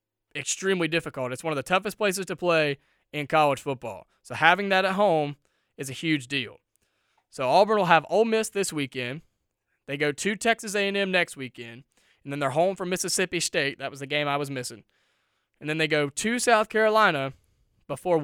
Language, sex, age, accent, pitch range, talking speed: English, male, 20-39, American, 125-180 Hz, 195 wpm